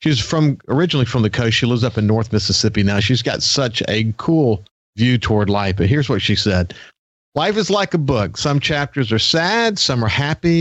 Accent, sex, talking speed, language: American, male, 215 wpm, English